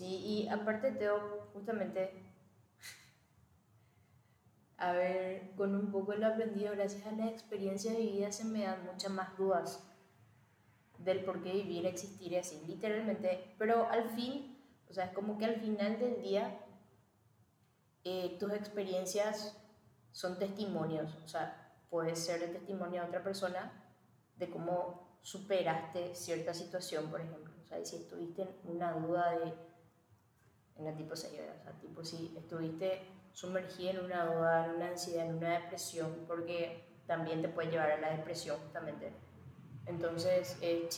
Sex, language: female, Spanish